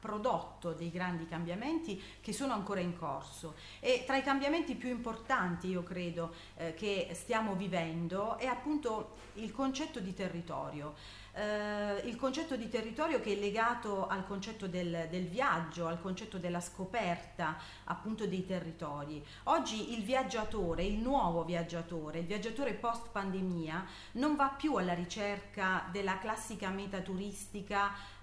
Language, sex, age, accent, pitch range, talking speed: Italian, female, 40-59, native, 180-235 Hz, 140 wpm